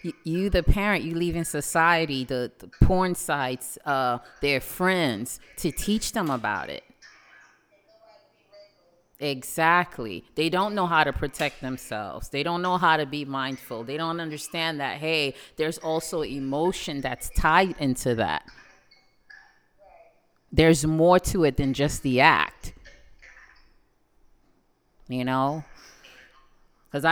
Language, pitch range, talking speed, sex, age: English, 135-170 Hz, 125 wpm, female, 30-49